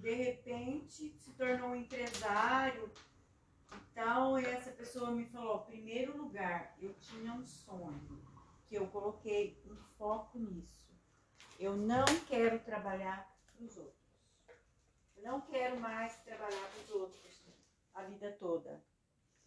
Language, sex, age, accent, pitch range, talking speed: Portuguese, female, 40-59, Brazilian, 195-265 Hz, 130 wpm